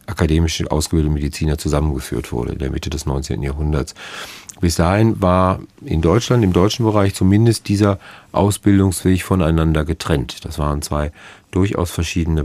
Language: German